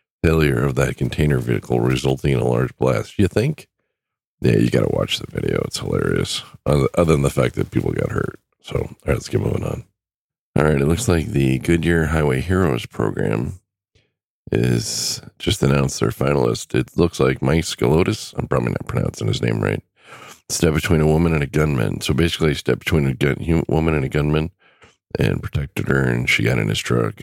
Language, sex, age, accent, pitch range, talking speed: English, male, 40-59, American, 70-85 Hz, 190 wpm